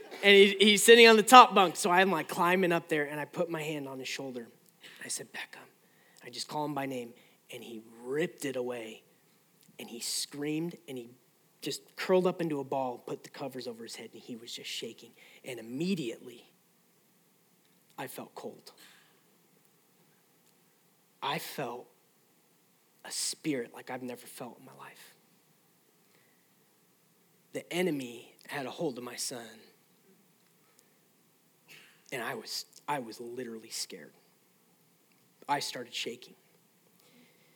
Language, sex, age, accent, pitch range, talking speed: English, male, 30-49, American, 130-175 Hz, 150 wpm